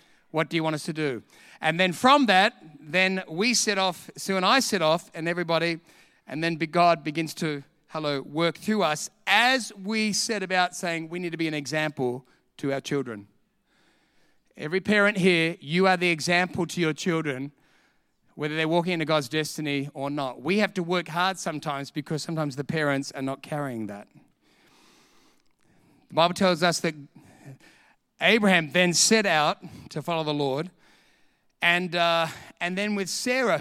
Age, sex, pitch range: 40-59, male, 160-205 Hz